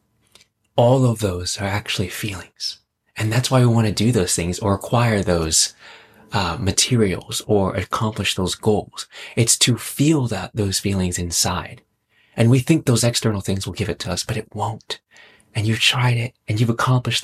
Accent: American